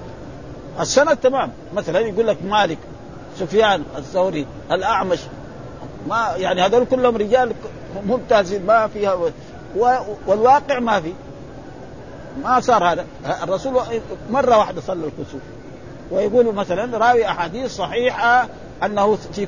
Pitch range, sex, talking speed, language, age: 175-240 Hz, male, 110 wpm, Arabic, 50-69